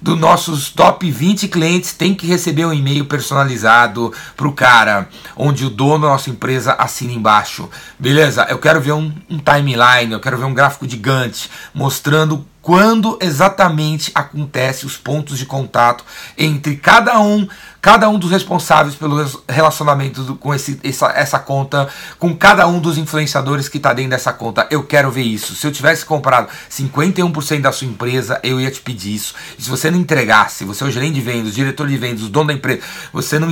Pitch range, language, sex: 130-155 Hz, Portuguese, male